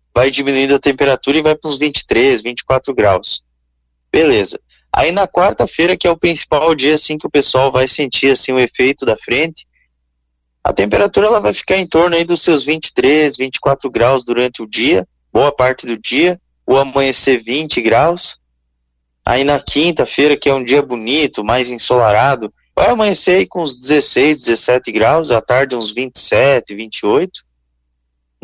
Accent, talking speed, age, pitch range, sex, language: Brazilian, 165 wpm, 20-39, 105-155 Hz, male, Portuguese